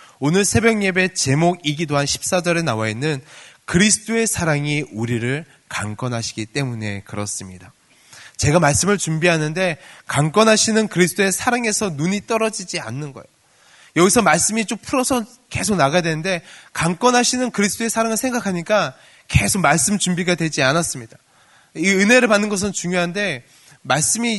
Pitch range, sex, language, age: 135-195 Hz, male, Korean, 20-39